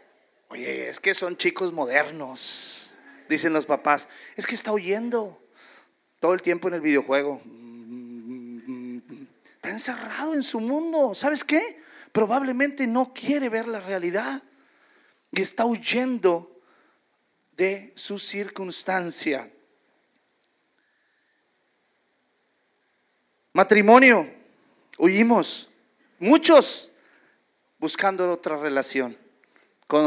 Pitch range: 195-290 Hz